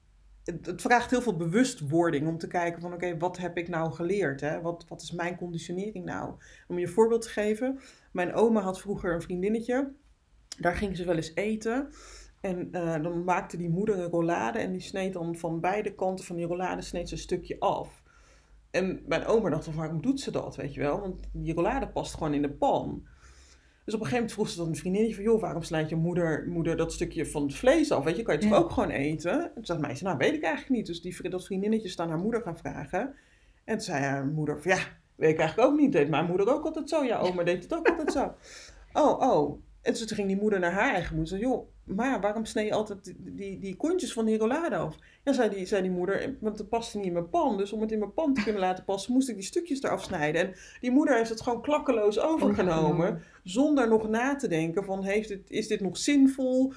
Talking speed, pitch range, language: 245 wpm, 170-225 Hz, Dutch